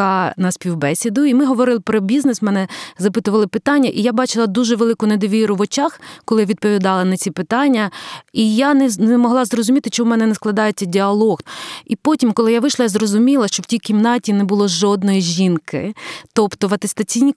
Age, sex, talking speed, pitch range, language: 30-49, female, 185 wpm, 190-230 Hz, Ukrainian